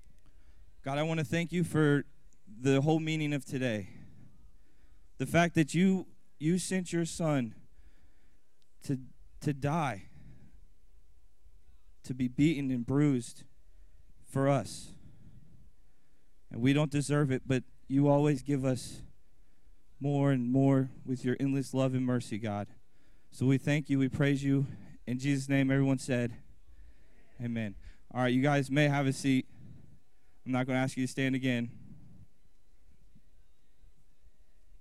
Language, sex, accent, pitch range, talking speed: English, male, American, 120-150 Hz, 140 wpm